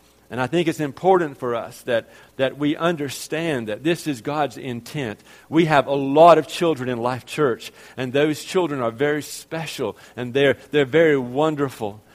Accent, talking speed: American, 180 wpm